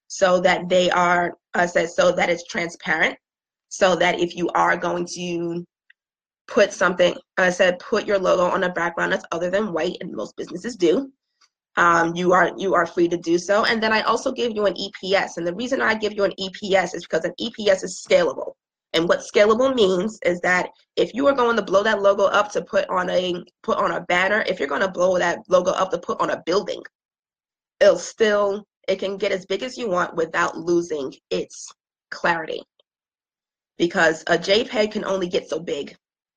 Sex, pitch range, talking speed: female, 175-215 Hz, 205 wpm